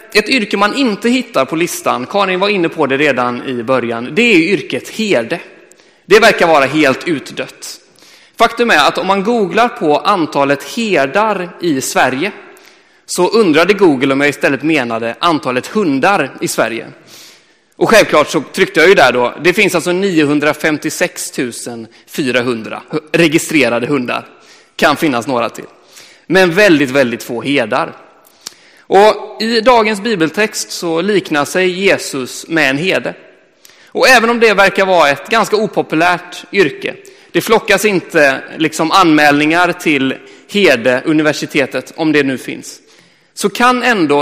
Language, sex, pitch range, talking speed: Swedish, male, 140-210 Hz, 145 wpm